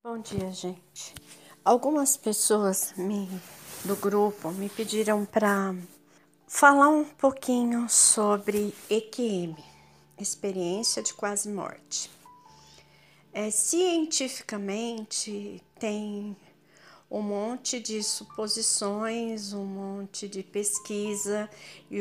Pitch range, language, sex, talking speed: 190-220 Hz, Portuguese, female, 85 wpm